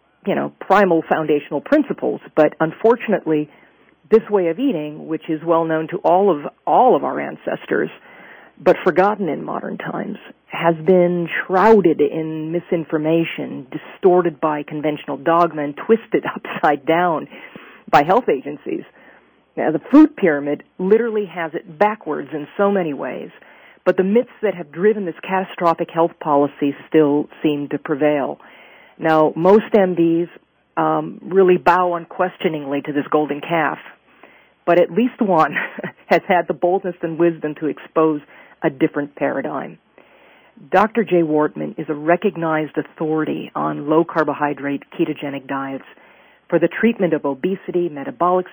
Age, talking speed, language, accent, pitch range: 40-59, 140 wpm, English, American, 155-185 Hz